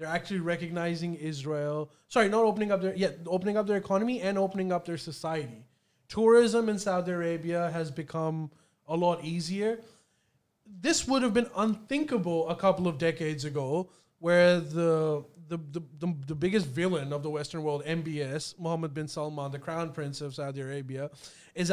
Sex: male